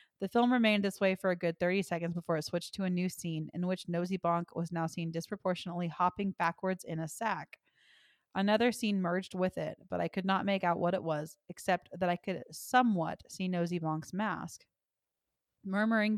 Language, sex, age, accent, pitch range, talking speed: English, female, 20-39, American, 165-195 Hz, 200 wpm